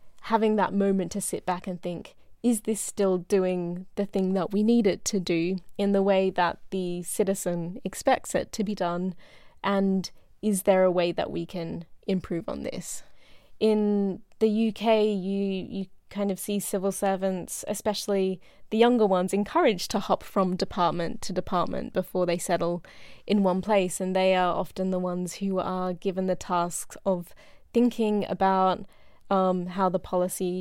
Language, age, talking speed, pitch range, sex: Danish, 20-39, 170 wpm, 180-205 Hz, female